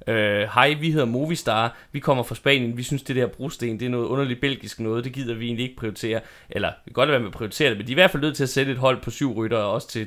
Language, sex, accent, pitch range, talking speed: Danish, male, native, 110-140 Hz, 315 wpm